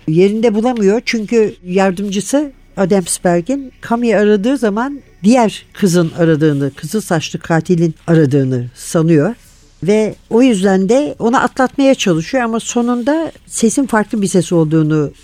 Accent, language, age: native, Turkish, 60-79